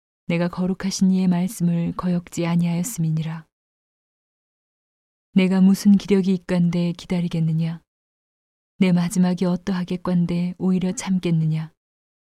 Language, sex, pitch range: Korean, female, 170-185 Hz